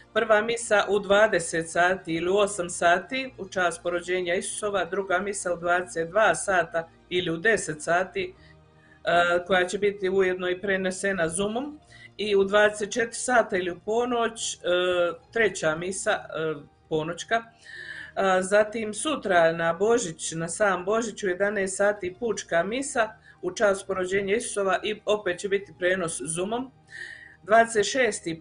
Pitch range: 175-210 Hz